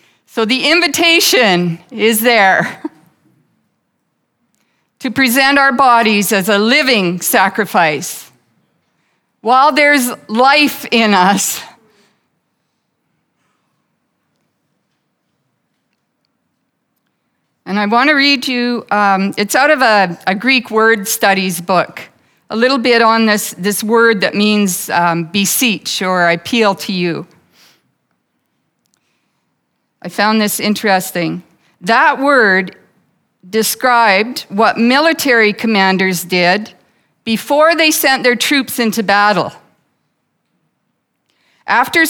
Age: 50-69